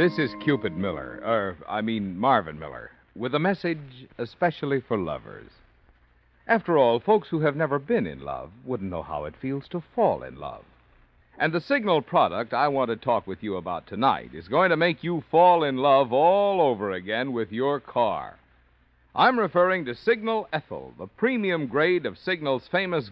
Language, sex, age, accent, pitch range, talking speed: English, male, 60-79, American, 115-185 Hz, 185 wpm